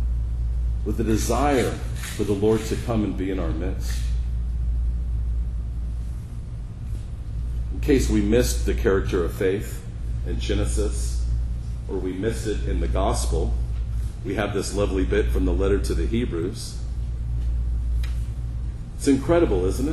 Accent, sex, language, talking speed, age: American, male, English, 135 wpm, 40-59